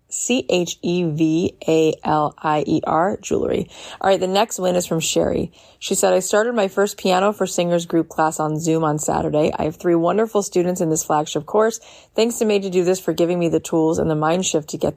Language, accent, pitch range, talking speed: English, American, 160-205 Hz, 205 wpm